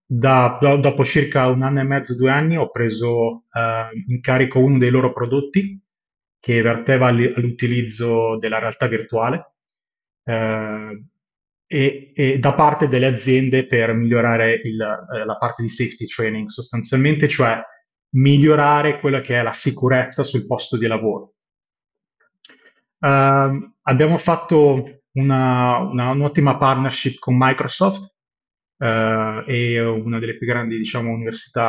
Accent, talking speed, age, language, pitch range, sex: native, 120 wpm, 30-49, Italian, 115-140 Hz, male